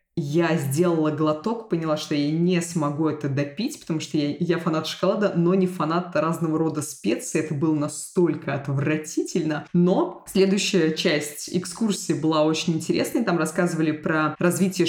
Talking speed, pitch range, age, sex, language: 150 wpm, 155-185 Hz, 20-39, female, Russian